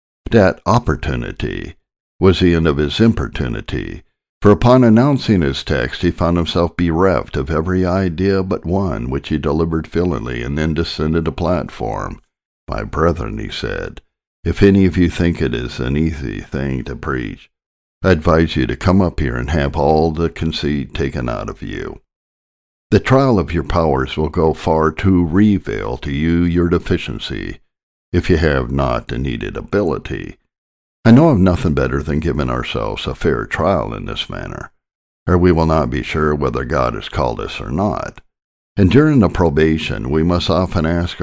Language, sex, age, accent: English, male, 60-79, American